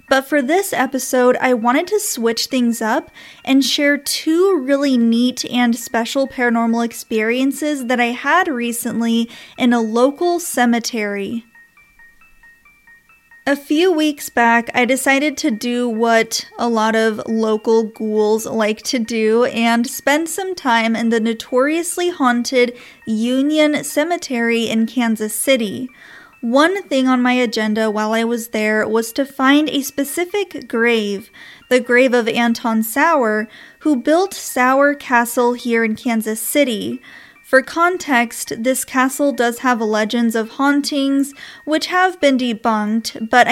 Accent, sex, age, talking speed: American, female, 20-39, 135 wpm